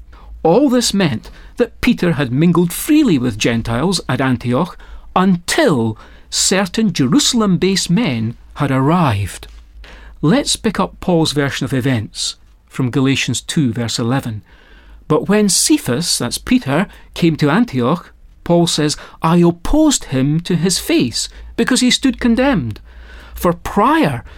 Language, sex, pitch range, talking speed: English, male, 130-205 Hz, 130 wpm